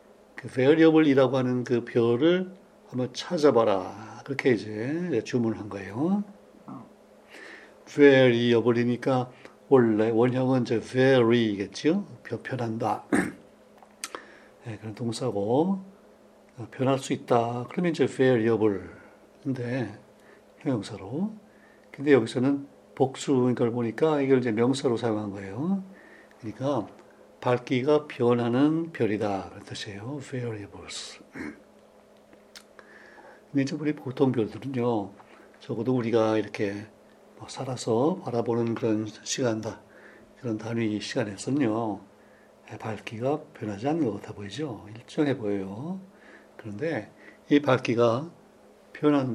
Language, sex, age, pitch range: Korean, male, 60-79, 110-140 Hz